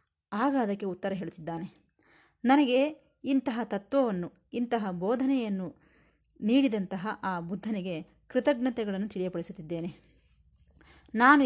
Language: Kannada